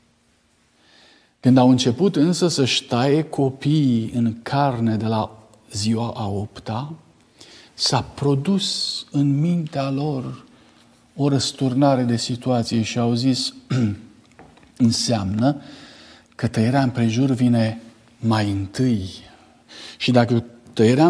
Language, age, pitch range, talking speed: Romanian, 50-69, 115-145 Hz, 100 wpm